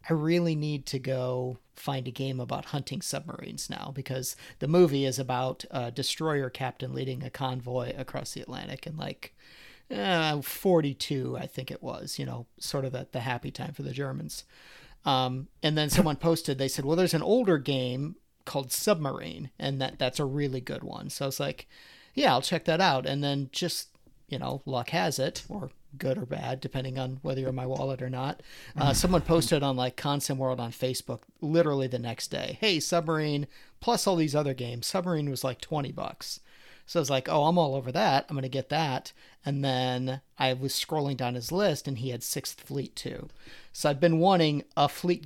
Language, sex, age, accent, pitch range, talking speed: English, male, 40-59, American, 130-165 Hz, 205 wpm